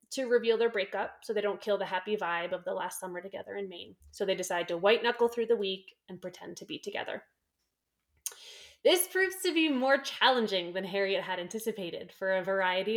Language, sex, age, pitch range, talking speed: English, female, 20-39, 190-230 Hz, 210 wpm